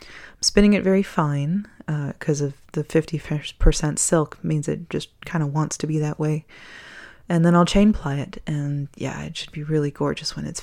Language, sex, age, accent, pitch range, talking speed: English, female, 20-39, American, 150-180 Hz, 200 wpm